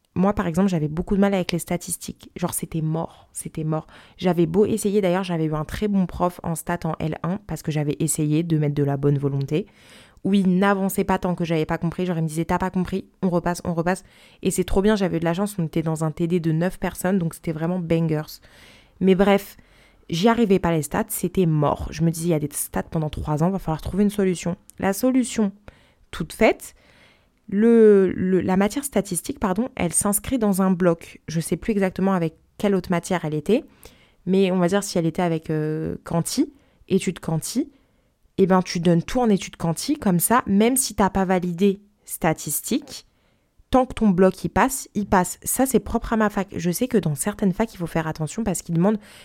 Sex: female